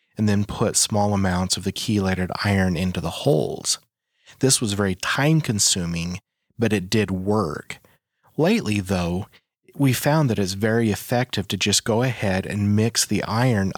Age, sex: 30-49, male